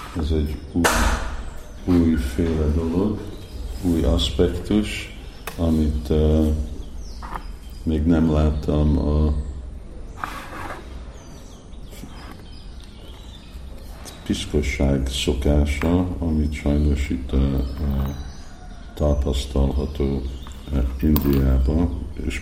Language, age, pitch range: Hungarian, 50-69, 70-80 Hz